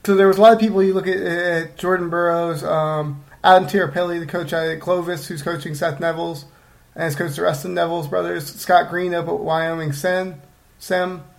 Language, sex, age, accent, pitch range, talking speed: English, male, 30-49, American, 155-195 Hz, 200 wpm